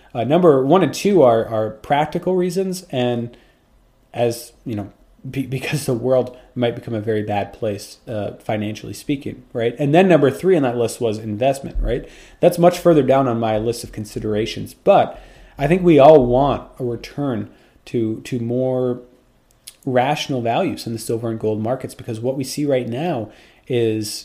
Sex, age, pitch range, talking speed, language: male, 30-49, 110-130 Hz, 180 wpm, English